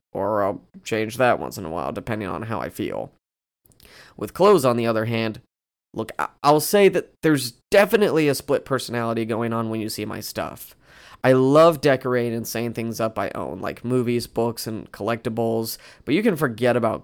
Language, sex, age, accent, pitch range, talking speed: English, male, 20-39, American, 115-130 Hz, 190 wpm